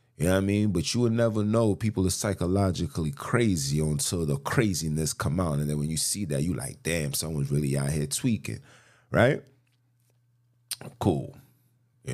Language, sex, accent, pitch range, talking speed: English, male, American, 70-100 Hz, 180 wpm